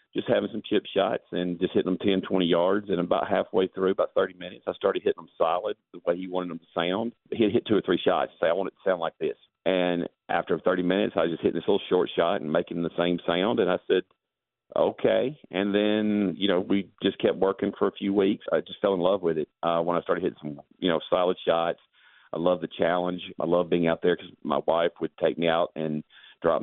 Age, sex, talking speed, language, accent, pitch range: 40-59, male, 255 wpm, English, American, 85-95 Hz